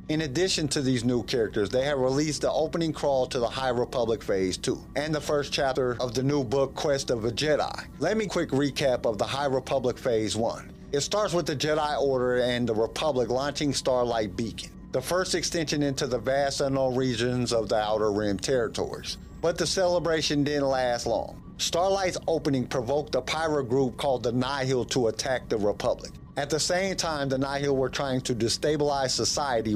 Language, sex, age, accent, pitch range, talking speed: English, male, 50-69, American, 125-150 Hz, 190 wpm